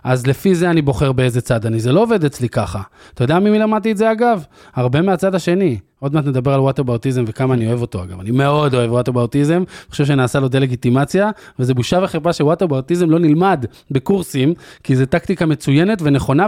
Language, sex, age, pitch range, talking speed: Hebrew, male, 20-39, 135-210 Hz, 205 wpm